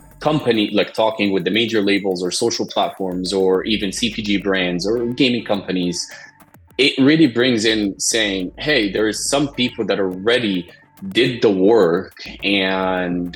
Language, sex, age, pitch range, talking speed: English, male, 20-39, 95-115 Hz, 150 wpm